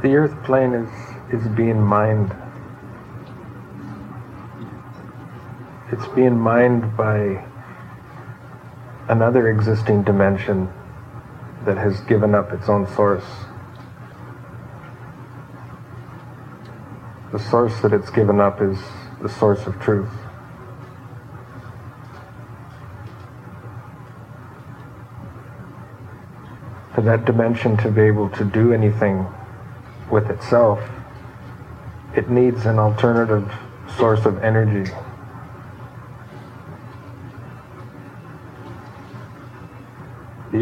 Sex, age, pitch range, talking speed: male, 40-59, 110-125 Hz, 75 wpm